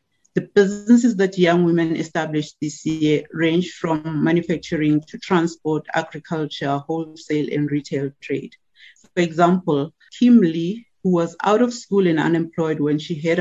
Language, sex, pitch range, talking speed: English, female, 150-185 Hz, 145 wpm